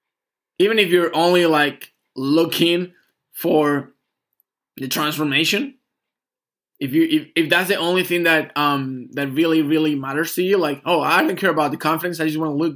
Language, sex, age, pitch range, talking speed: English, male, 20-39, 130-165 Hz, 180 wpm